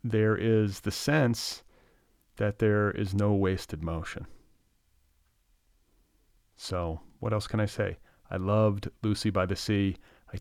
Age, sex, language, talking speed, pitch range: 40-59, male, English, 135 wpm, 95-115 Hz